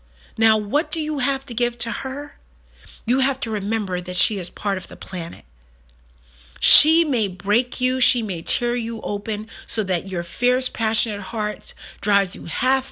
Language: English